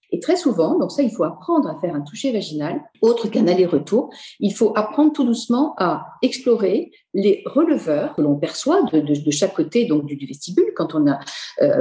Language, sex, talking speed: French, female, 205 wpm